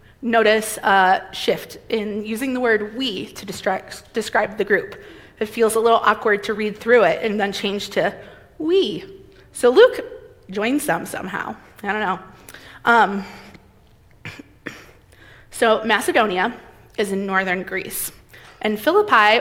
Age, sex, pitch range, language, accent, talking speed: 20-39, female, 210-250 Hz, English, American, 135 wpm